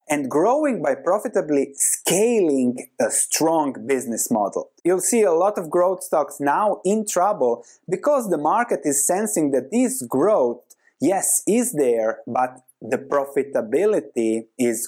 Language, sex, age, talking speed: English, male, 30-49, 135 wpm